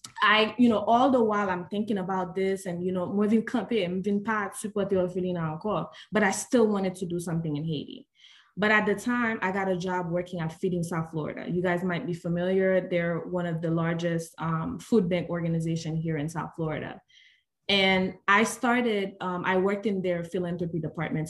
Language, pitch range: English, 175-205 Hz